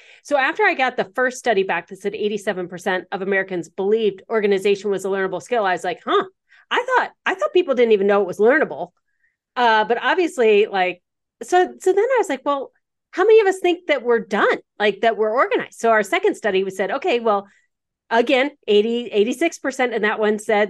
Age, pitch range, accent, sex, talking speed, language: 30-49, 205-300 Hz, American, female, 205 wpm, English